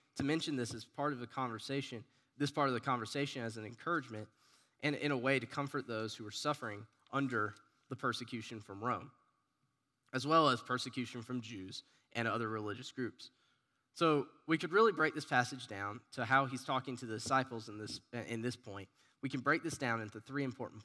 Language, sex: English, male